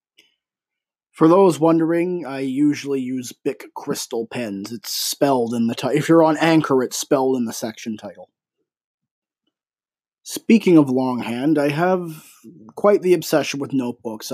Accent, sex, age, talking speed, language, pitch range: American, male, 20-39, 140 wpm, English, 120-150 Hz